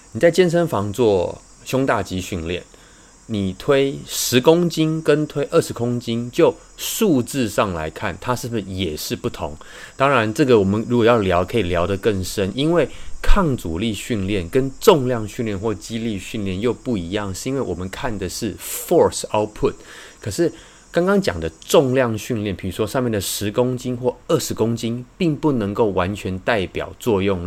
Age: 20-39